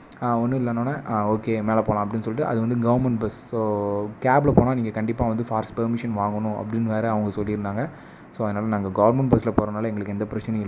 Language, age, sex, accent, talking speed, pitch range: Tamil, 20-39, male, native, 190 wpm, 110-125 Hz